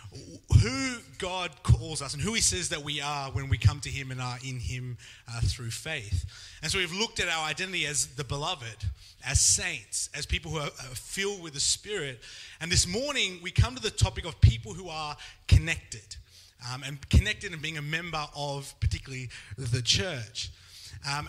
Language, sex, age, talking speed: English, male, 30-49, 190 wpm